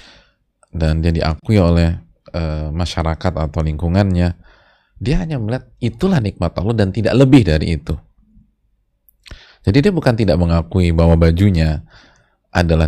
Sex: male